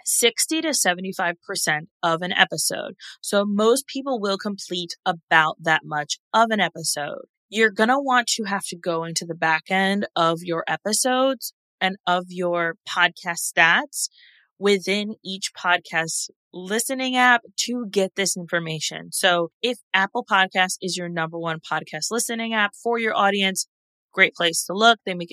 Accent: American